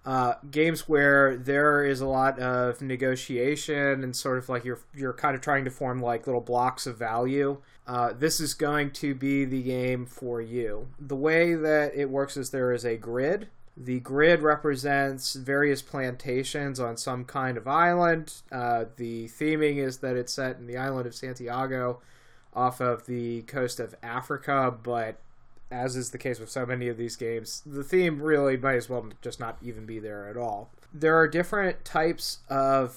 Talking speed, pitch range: 185 wpm, 125-150 Hz